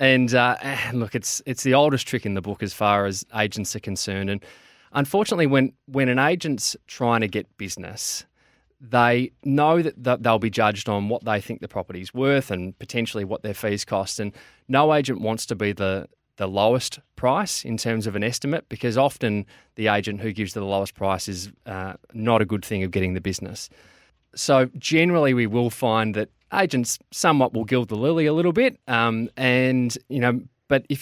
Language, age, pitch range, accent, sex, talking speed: English, 20-39, 105-130 Hz, Australian, male, 195 wpm